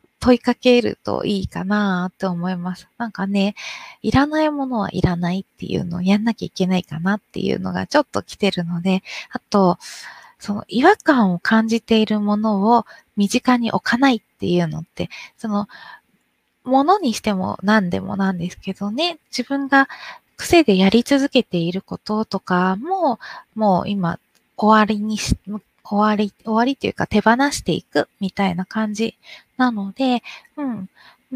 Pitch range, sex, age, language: 195-250 Hz, female, 20-39, Japanese